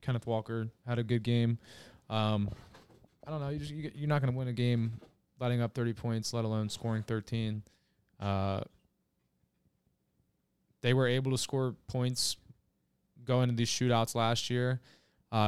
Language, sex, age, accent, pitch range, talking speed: English, male, 20-39, American, 105-120 Hz, 160 wpm